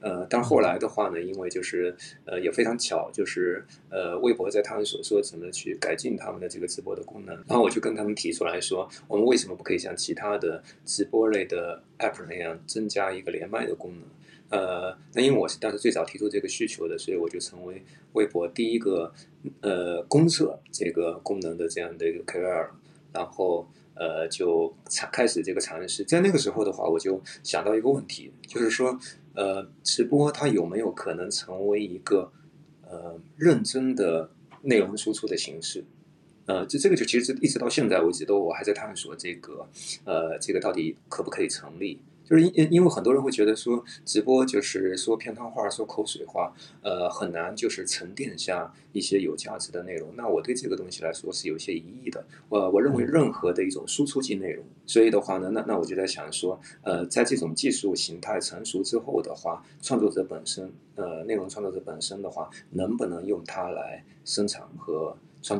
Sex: male